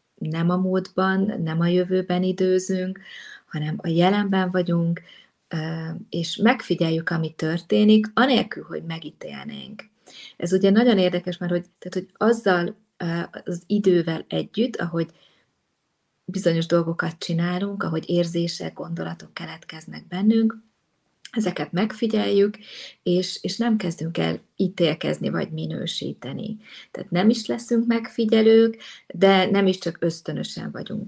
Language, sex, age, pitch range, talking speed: Hungarian, female, 30-49, 165-200 Hz, 115 wpm